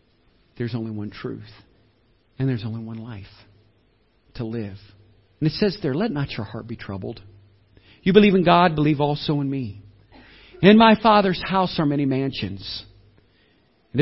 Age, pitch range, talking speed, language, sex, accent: 50-69, 105-155 Hz, 160 wpm, English, male, American